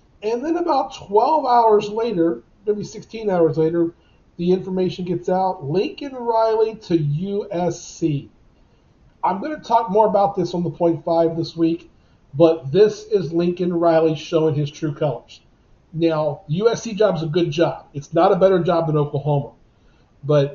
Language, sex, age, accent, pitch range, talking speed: English, male, 40-59, American, 150-180 Hz, 155 wpm